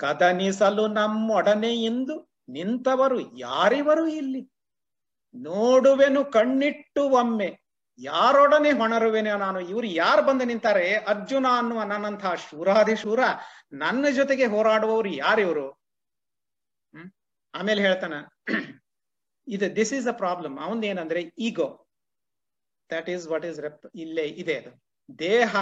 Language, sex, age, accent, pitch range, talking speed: Kannada, male, 50-69, native, 155-225 Hz, 100 wpm